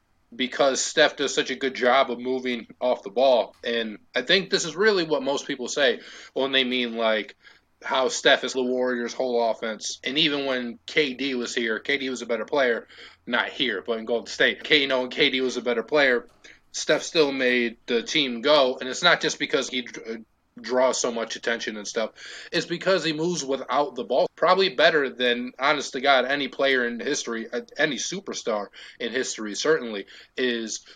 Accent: American